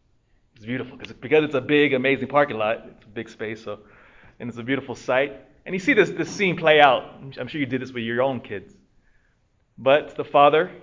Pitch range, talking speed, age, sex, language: 115-160 Hz, 225 wpm, 20-39, male, English